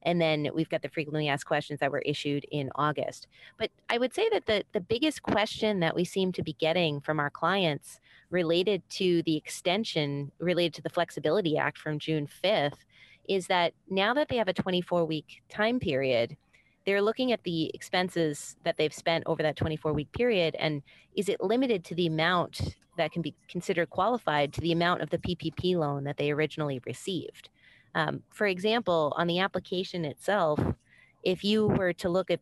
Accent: American